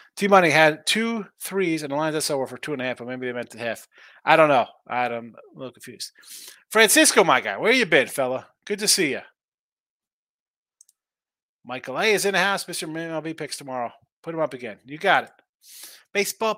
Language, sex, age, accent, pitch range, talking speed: English, male, 30-49, American, 145-190 Hz, 205 wpm